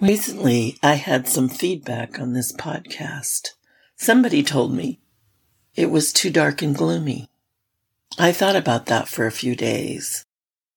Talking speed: 140 wpm